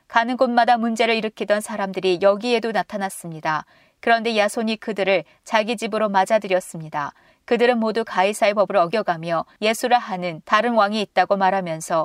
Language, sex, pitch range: Korean, female, 180-230 Hz